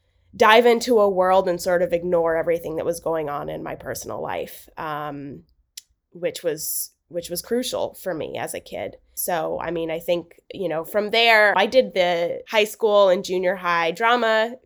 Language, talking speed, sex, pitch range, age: English, 190 wpm, female, 175-230 Hz, 20-39